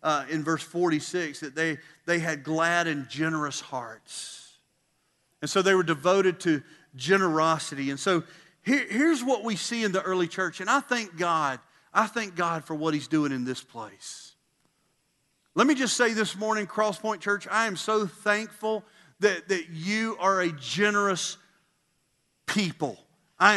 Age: 40-59